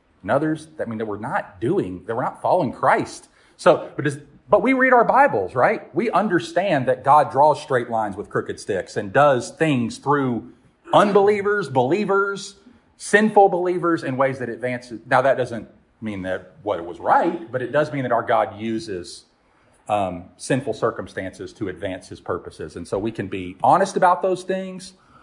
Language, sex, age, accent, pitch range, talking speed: English, male, 40-59, American, 115-180 Hz, 185 wpm